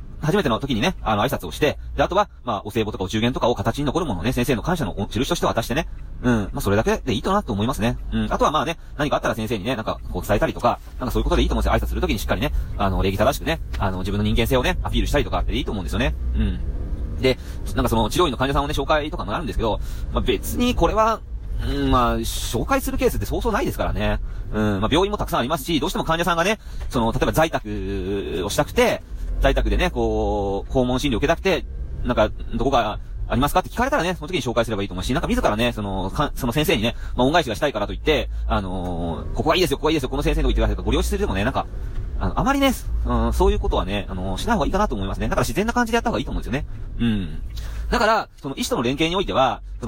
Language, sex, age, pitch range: Japanese, male, 30-49, 100-150 Hz